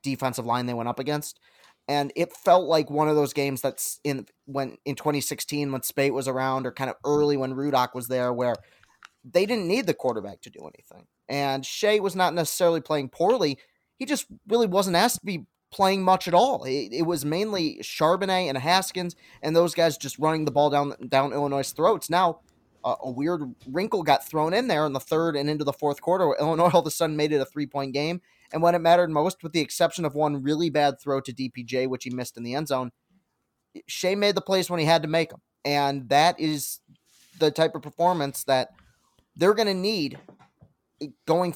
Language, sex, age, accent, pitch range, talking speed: English, male, 20-39, American, 135-175 Hz, 215 wpm